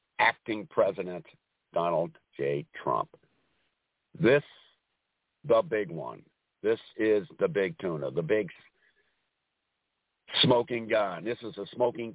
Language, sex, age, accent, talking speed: English, male, 60-79, American, 110 wpm